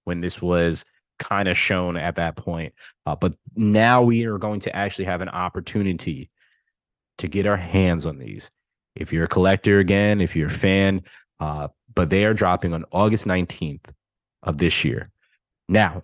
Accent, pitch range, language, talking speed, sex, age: American, 90-105 Hz, Polish, 175 wpm, male, 20-39